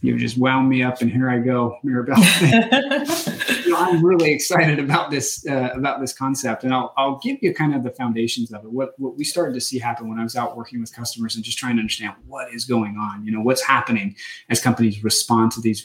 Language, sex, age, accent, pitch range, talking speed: English, male, 30-49, American, 115-140 Hz, 240 wpm